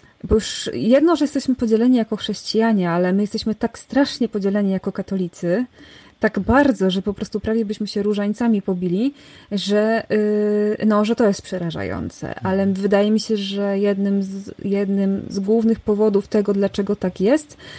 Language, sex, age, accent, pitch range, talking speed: Polish, female, 20-39, native, 195-220 Hz, 150 wpm